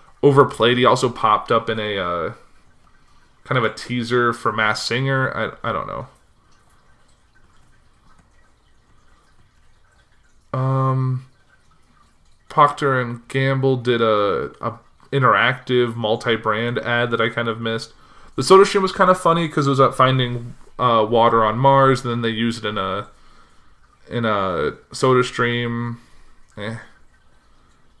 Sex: male